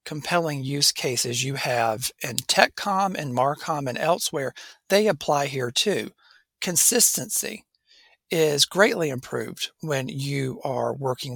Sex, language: male, English